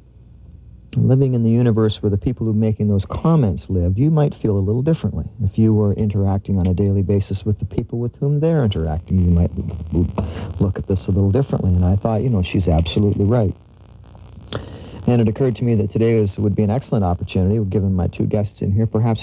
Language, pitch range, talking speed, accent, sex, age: English, 95-110 Hz, 215 wpm, American, male, 50-69